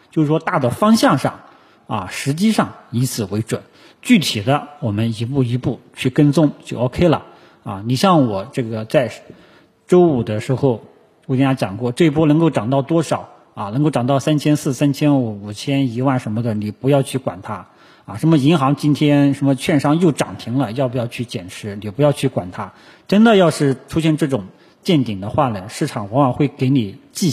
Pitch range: 120-150 Hz